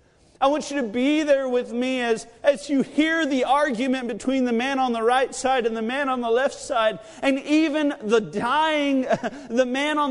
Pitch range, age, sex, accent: 180-260 Hz, 40-59, male, American